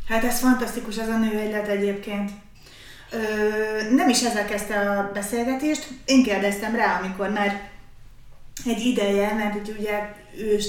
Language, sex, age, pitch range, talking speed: Hungarian, female, 30-49, 190-230 Hz, 135 wpm